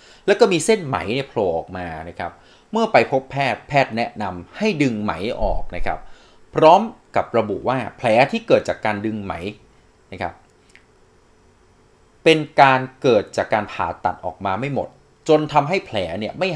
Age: 20-39